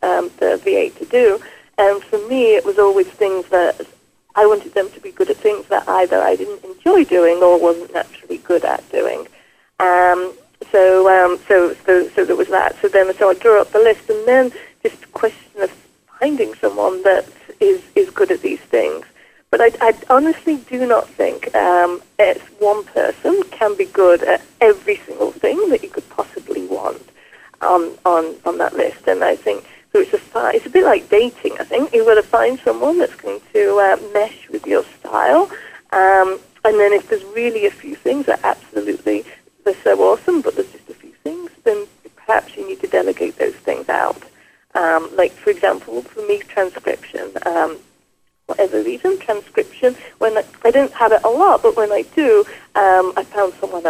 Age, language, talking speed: 30-49, English, 195 wpm